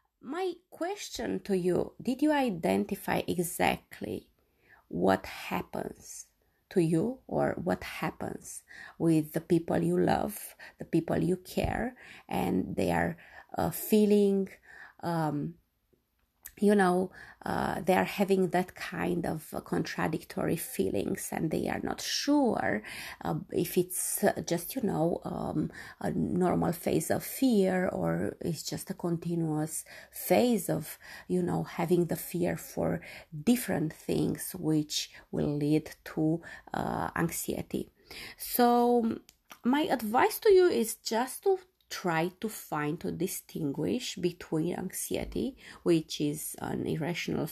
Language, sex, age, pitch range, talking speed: Romanian, female, 30-49, 170-215 Hz, 120 wpm